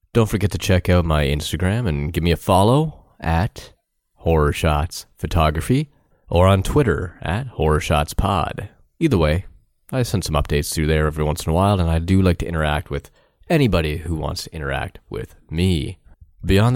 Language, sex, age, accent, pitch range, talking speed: English, male, 30-49, American, 75-100 Hz, 185 wpm